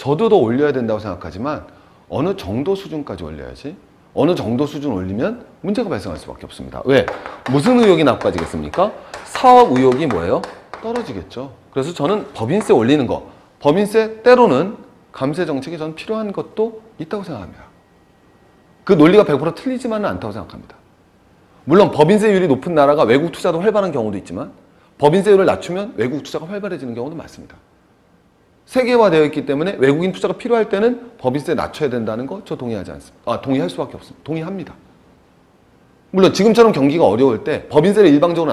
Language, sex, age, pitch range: Korean, male, 40-59, 135-210 Hz